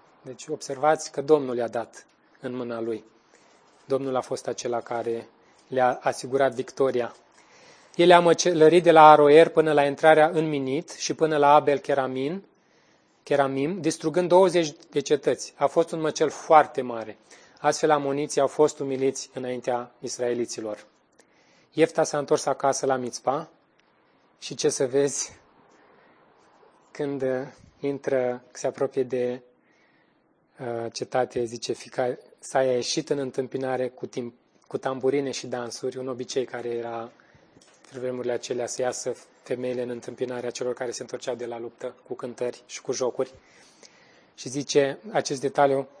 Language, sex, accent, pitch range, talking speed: Romanian, male, native, 125-150 Hz, 140 wpm